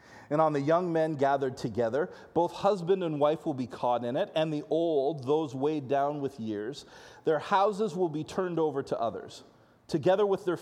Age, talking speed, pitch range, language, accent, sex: 30-49, 200 wpm, 125-175 Hz, English, American, male